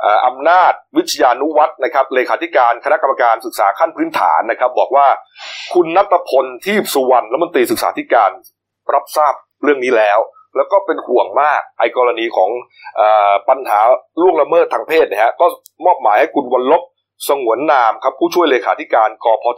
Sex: male